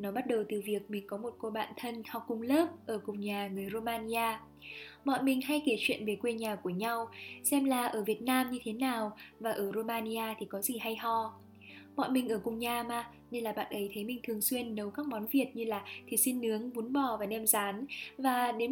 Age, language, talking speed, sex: 10-29, Vietnamese, 240 wpm, female